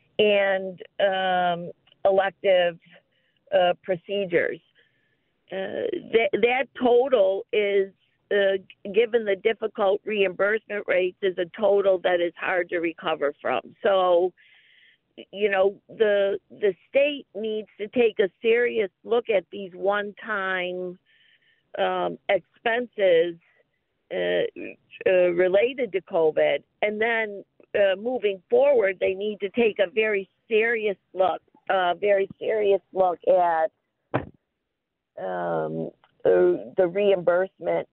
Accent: American